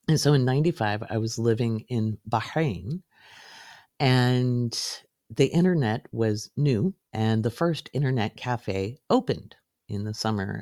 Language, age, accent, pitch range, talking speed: English, 50-69, American, 105-135 Hz, 130 wpm